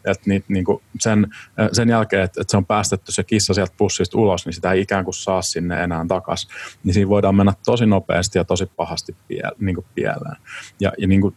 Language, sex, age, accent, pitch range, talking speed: Finnish, male, 30-49, native, 95-105 Hz, 205 wpm